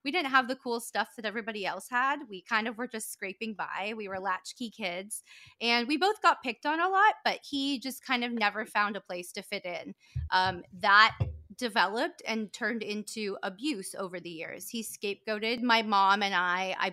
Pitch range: 190-240 Hz